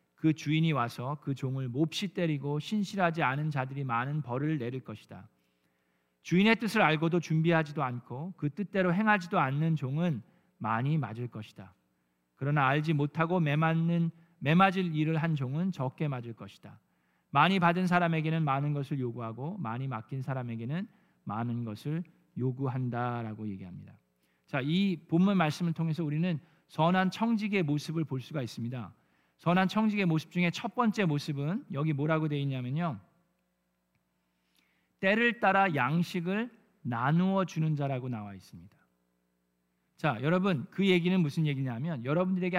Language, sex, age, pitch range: Korean, male, 40-59, 125-175 Hz